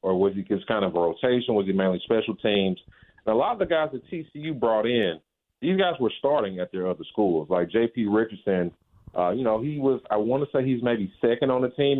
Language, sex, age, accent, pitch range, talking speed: English, male, 30-49, American, 105-135 Hz, 245 wpm